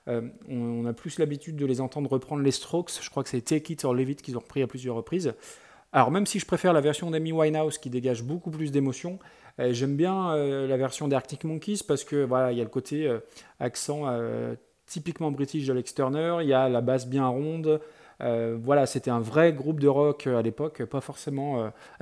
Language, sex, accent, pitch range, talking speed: French, male, French, 125-155 Hz, 230 wpm